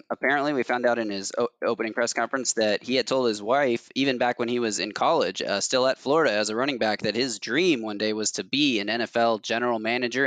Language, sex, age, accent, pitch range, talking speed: English, male, 20-39, American, 115-140 Hz, 245 wpm